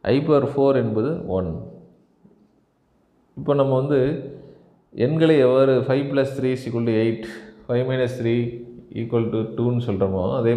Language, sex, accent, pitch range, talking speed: Tamil, male, native, 105-135 Hz, 135 wpm